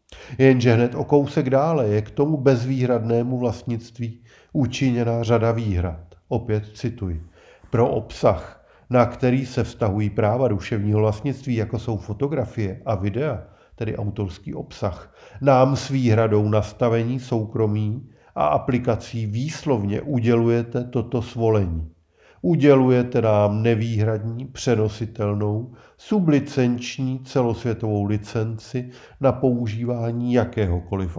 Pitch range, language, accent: 105-125 Hz, Czech, native